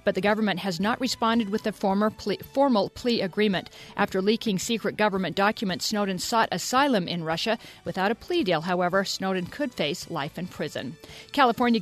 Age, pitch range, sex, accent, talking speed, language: 50-69, 185-235 Hz, female, American, 170 wpm, English